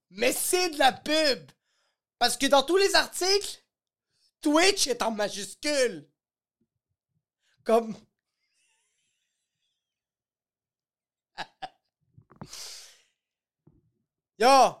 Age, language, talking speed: 30-49, French, 70 wpm